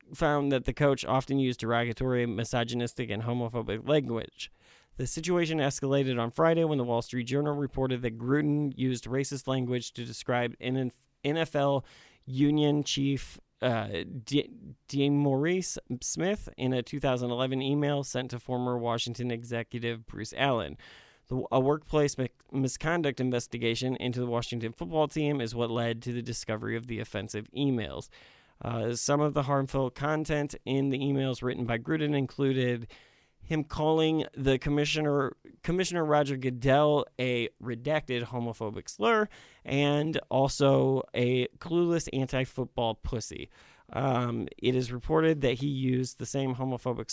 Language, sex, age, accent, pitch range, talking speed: English, male, 30-49, American, 120-145 Hz, 135 wpm